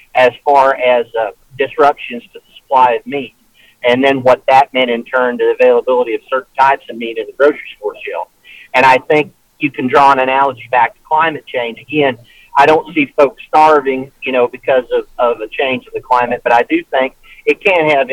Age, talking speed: 50-69, 215 wpm